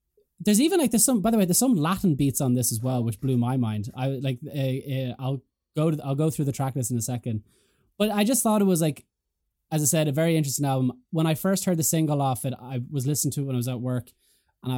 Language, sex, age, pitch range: English, male, 20-39, 120-145 Hz